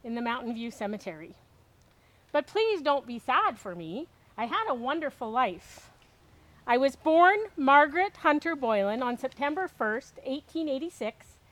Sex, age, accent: female, 50-69, American